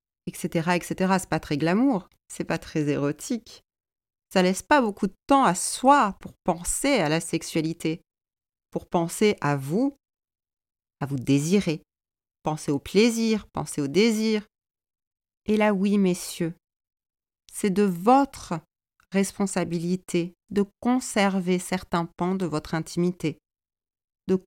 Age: 40-59